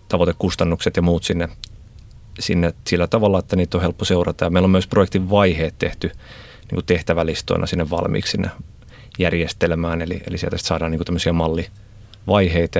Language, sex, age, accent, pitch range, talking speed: Finnish, male, 30-49, native, 85-100 Hz, 150 wpm